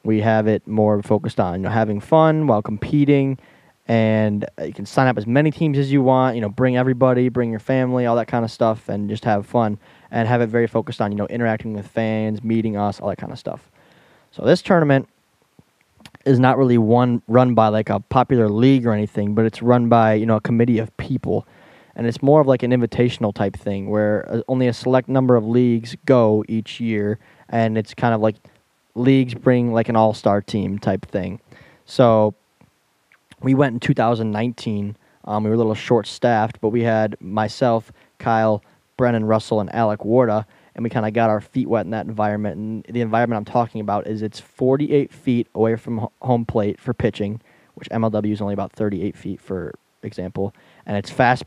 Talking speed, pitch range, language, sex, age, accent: 205 wpm, 105-125 Hz, English, male, 10-29, American